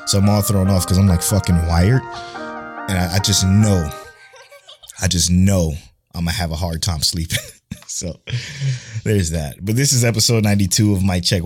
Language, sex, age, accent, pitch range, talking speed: English, male, 20-39, American, 90-115 Hz, 195 wpm